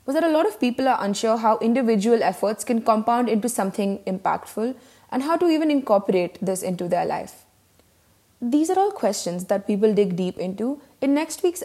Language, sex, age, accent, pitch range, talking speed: English, female, 20-39, Indian, 190-270 Hz, 195 wpm